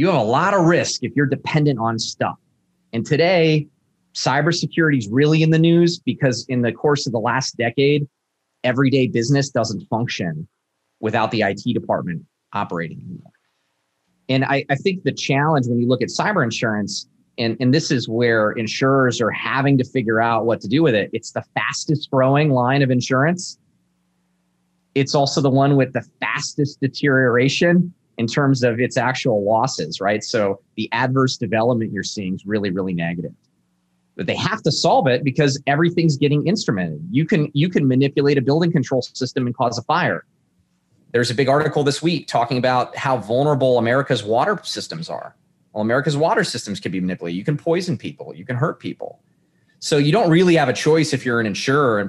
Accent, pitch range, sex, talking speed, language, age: American, 115-145 Hz, male, 185 wpm, English, 30-49